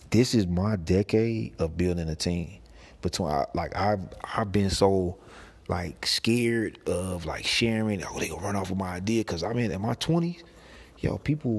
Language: English